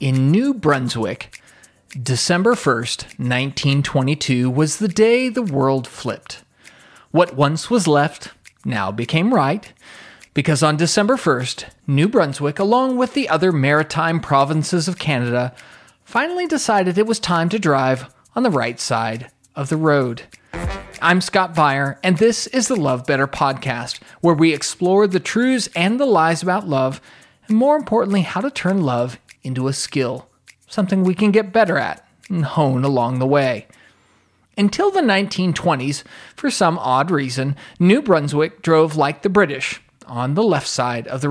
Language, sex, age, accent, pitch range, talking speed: English, male, 30-49, American, 130-185 Hz, 155 wpm